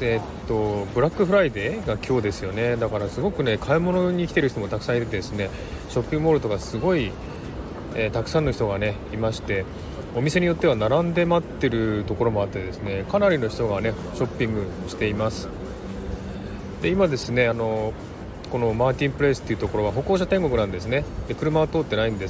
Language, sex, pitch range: Japanese, male, 105-150 Hz